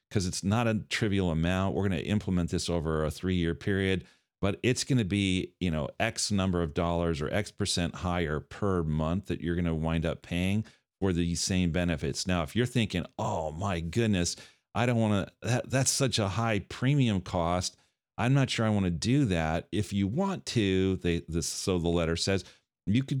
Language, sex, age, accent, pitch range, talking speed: English, male, 40-59, American, 85-110 Hz, 210 wpm